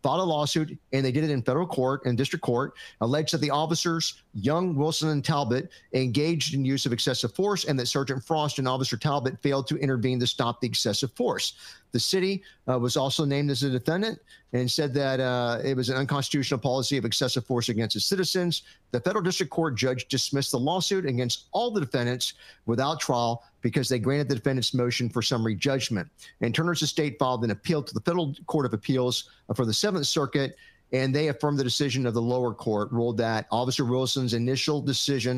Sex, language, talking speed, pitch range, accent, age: male, English, 200 wpm, 125-155 Hz, American, 50-69